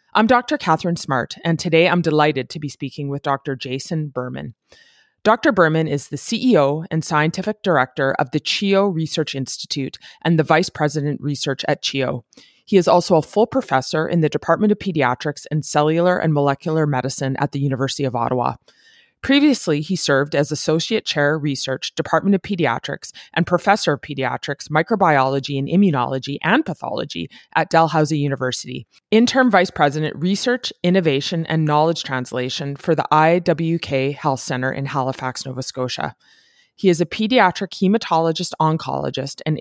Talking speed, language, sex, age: 155 wpm, English, female, 30-49